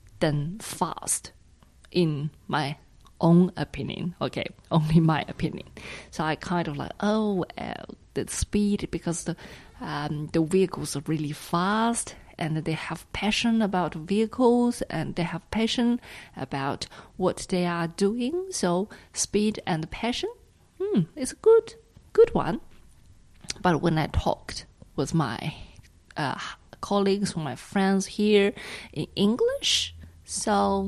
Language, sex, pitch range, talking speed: English, female, 155-210 Hz, 130 wpm